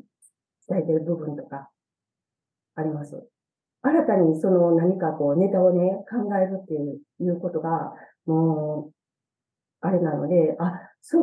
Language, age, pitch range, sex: Japanese, 40-59, 170-240 Hz, female